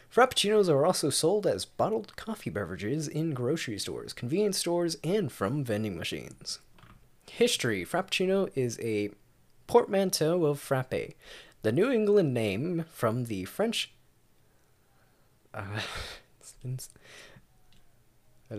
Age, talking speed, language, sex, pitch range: 20-39, 110 wpm, English, male, 120-180 Hz